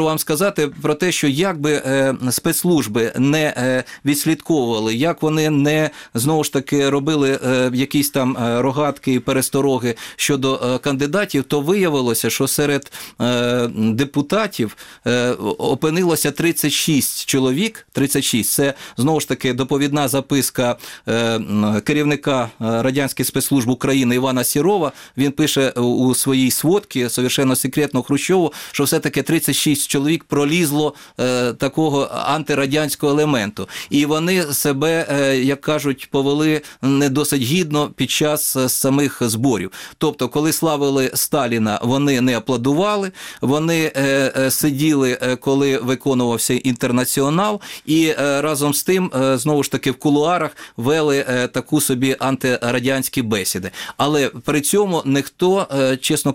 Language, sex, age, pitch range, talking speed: Ukrainian, male, 30-49, 130-150 Hz, 120 wpm